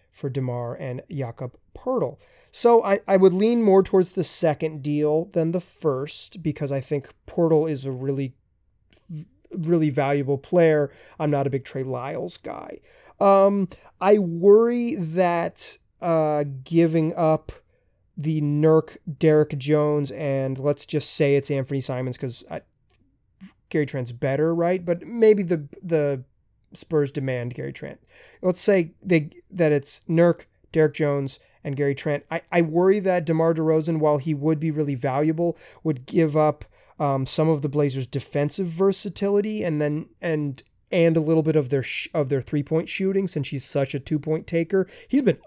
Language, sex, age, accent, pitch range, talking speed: English, male, 30-49, American, 140-175 Hz, 160 wpm